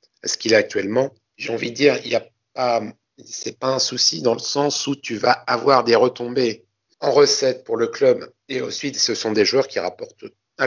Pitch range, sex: 115-145 Hz, male